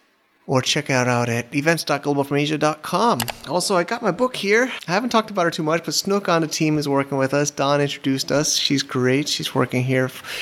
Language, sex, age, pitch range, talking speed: English, male, 30-49, 125-150 Hz, 205 wpm